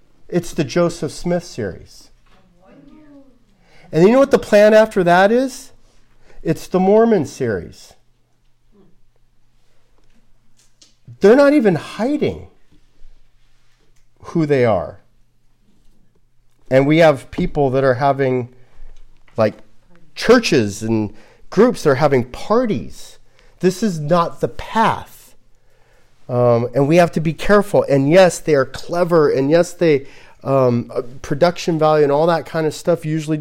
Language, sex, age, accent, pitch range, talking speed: English, male, 40-59, American, 135-190 Hz, 125 wpm